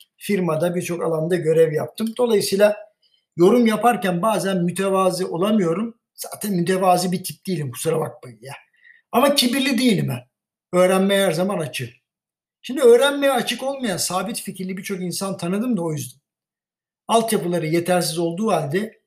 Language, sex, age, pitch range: Turkish, male, 60-79, 170-230 Hz